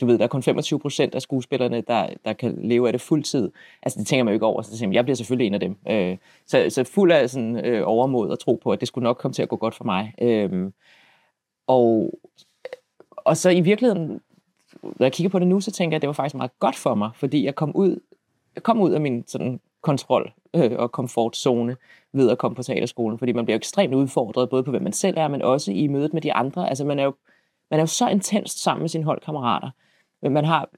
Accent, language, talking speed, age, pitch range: native, Danish, 250 wpm, 20-39, 125-165 Hz